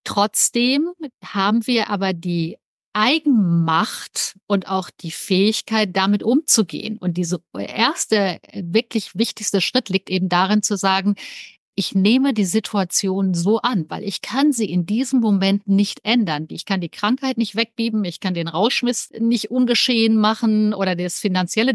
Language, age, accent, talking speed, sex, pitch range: German, 50-69, German, 150 wpm, female, 190-225 Hz